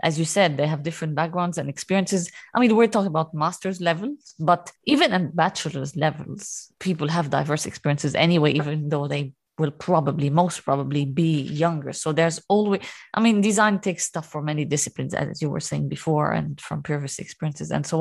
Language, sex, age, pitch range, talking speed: English, female, 20-39, 160-205 Hz, 190 wpm